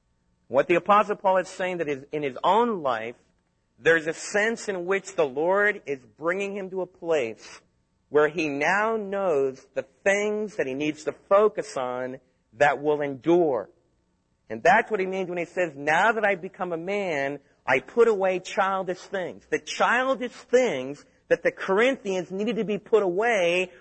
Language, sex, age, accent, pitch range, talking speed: English, male, 40-59, American, 170-235 Hz, 175 wpm